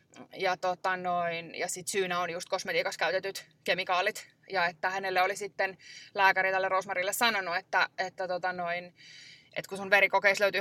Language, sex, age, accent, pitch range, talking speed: Finnish, female, 20-39, native, 195-260 Hz, 160 wpm